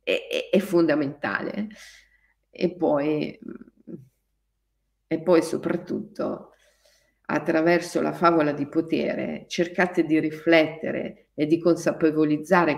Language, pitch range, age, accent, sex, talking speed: Italian, 160-240 Hz, 50-69, native, female, 85 wpm